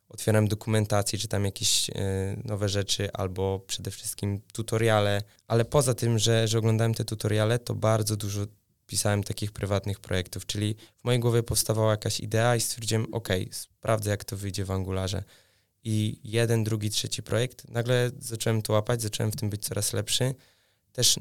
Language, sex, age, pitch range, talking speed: Polish, male, 20-39, 105-120 Hz, 165 wpm